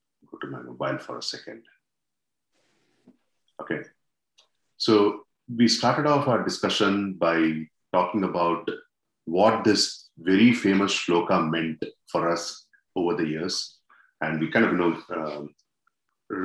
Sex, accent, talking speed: male, Indian, 125 wpm